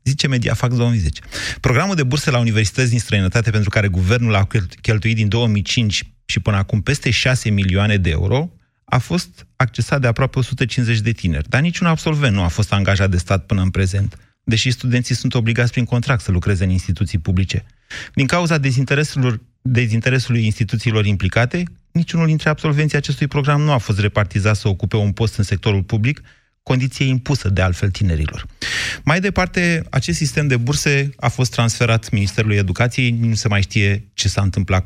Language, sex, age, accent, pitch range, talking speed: Romanian, male, 30-49, native, 100-130 Hz, 175 wpm